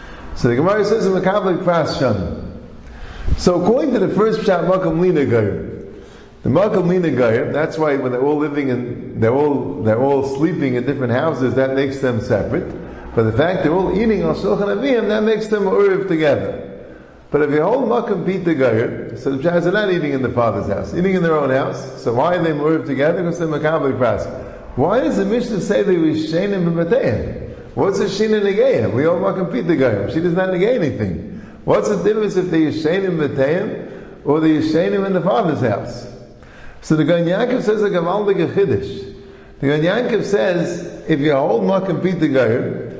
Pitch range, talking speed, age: 145-205 Hz, 185 wpm, 50-69